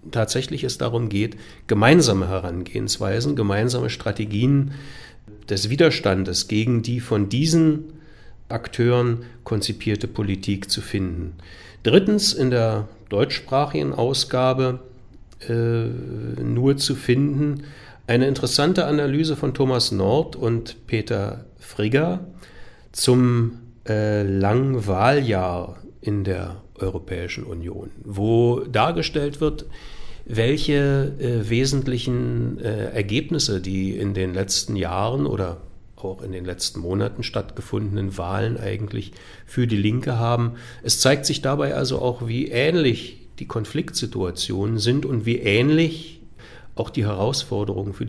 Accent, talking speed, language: German, 110 wpm, German